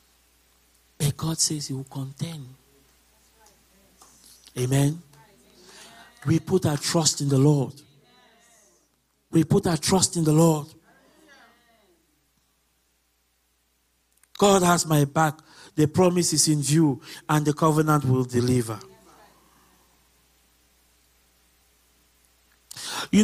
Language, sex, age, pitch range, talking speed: English, male, 50-69, 130-160 Hz, 95 wpm